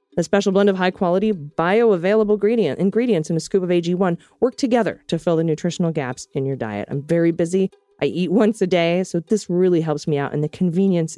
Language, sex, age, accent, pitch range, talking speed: English, female, 40-59, American, 155-200 Hz, 220 wpm